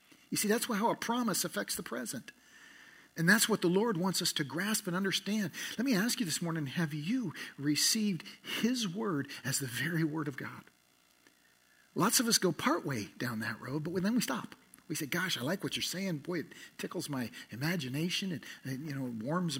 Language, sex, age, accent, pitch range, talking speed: English, male, 50-69, American, 135-190 Hz, 210 wpm